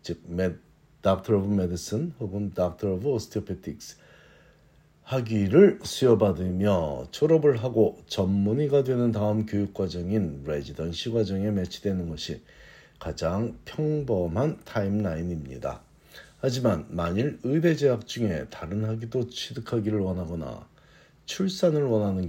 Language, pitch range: Korean, 90-120 Hz